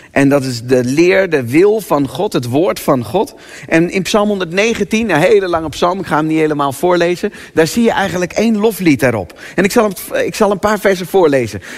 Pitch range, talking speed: 165-230 Hz, 220 wpm